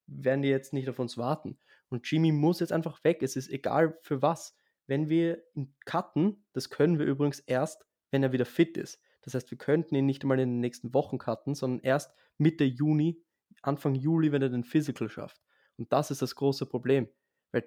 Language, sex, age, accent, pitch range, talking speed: German, male, 20-39, German, 130-155 Hz, 205 wpm